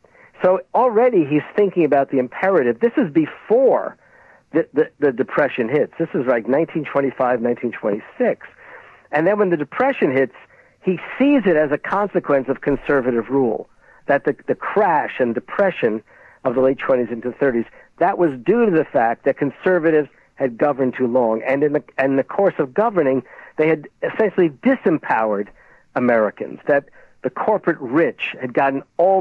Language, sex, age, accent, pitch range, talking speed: English, male, 50-69, American, 125-175 Hz, 160 wpm